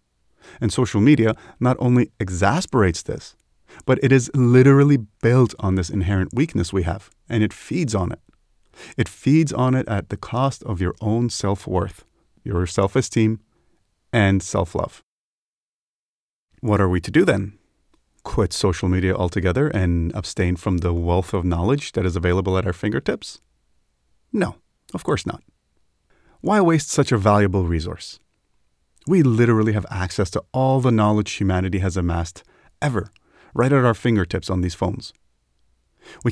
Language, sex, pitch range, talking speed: English, male, 90-125 Hz, 150 wpm